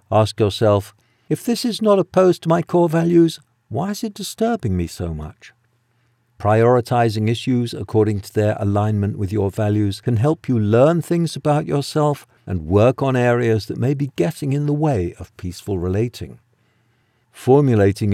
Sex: male